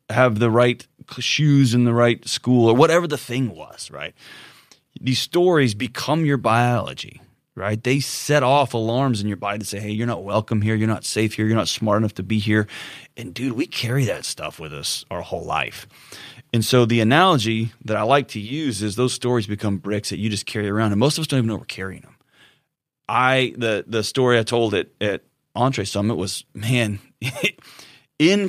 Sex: male